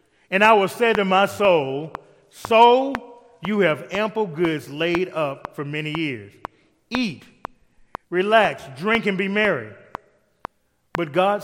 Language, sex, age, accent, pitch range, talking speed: English, male, 30-49, American, 125-165 Hz, 130 wpm